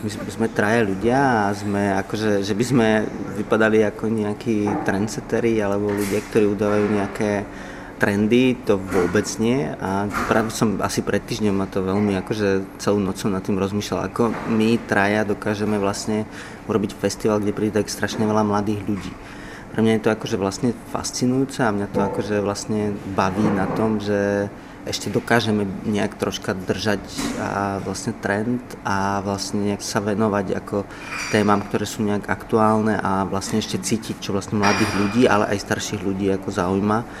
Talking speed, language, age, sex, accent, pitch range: 155 wpm, Czech, 30-49, male, native, 100-110 Hz